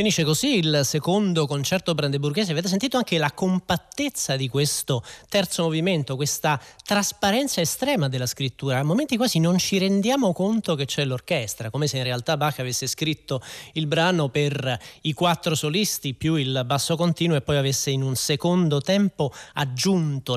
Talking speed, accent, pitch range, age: 160 wpm, native, 125-165 Hz, 30-49